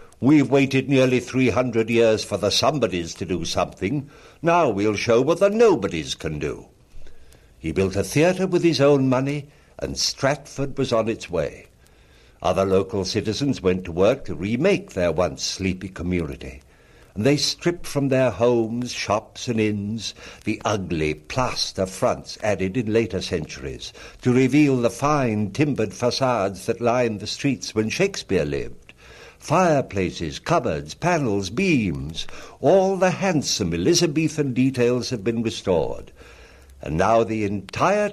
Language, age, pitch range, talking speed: English, 60-79, 95-140 Hz, 145 wpm